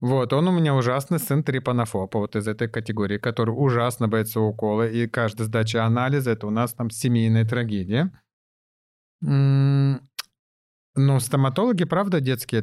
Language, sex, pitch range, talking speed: Russian, male, 110-130 Hz, 145 wpm